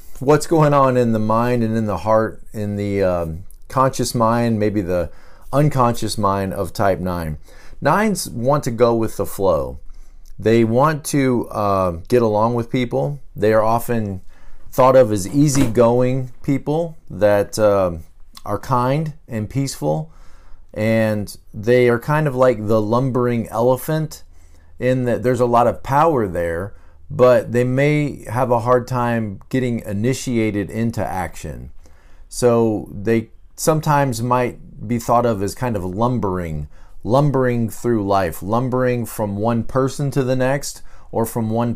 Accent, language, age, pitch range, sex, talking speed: American, English, 40-59, 100-125 Hz, male, 150 wpm